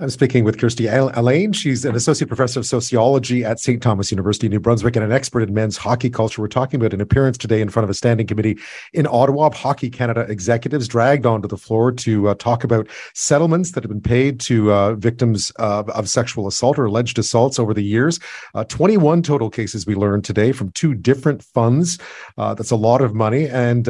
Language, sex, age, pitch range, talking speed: English, male, 40-59, 110-135 Hz, 215 wpm